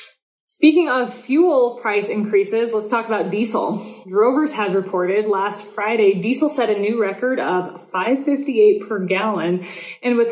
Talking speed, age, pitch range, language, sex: 145 wpm, 20-39, 195-245 Hz, English, female